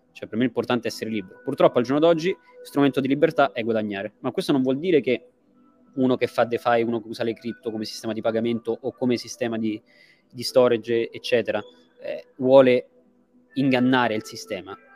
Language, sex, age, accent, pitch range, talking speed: Italian, male, 20-39, native, 120-150 Hz, 190 wpm